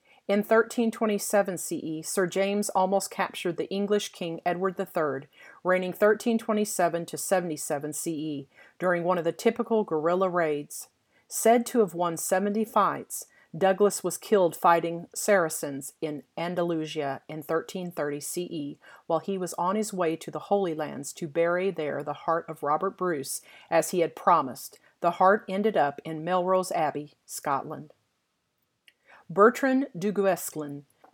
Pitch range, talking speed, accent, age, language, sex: 165-200 Hz, 145 wpm, American, 40-59, English, female